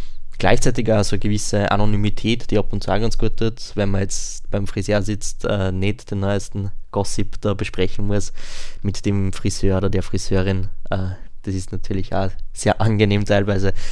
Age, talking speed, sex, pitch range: 20-39, 180 wpm, male, 95-105 Hz